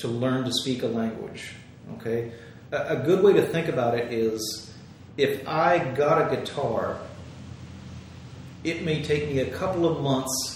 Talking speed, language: 165 wpm, English